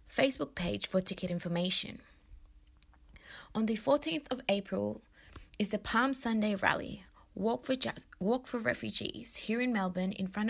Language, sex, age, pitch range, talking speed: English, female, 20-39, 185-235 Hz, 135 wpm